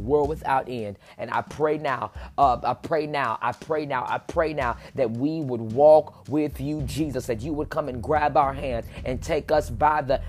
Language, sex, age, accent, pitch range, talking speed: English, male, 30-49, American, 140-180 Hz, 215 wpm